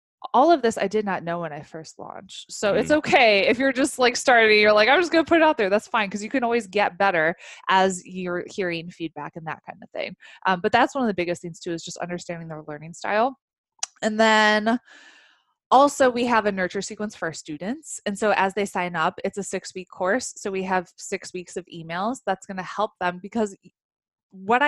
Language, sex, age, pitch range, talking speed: English, female, 20-39, 170-215 Hz, 235 wpm